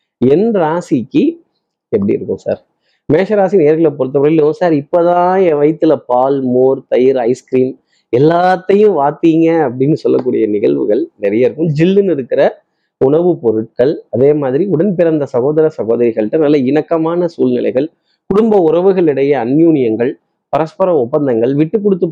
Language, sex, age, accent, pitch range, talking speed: Tamil, male, 30-49, native, 135-175 Hz, 110 wpm